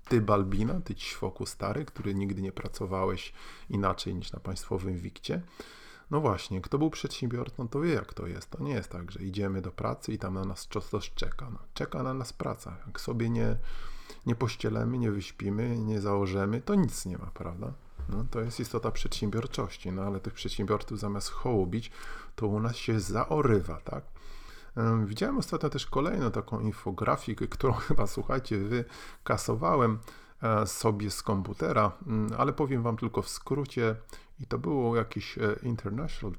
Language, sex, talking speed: Polish, male, 165 wpm